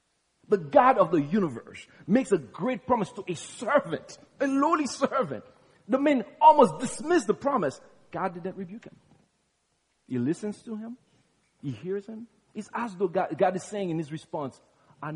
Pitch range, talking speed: 140-220 Hz, 170 wpm